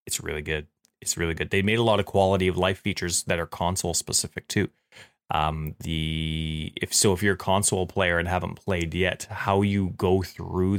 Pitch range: 85-100 Hz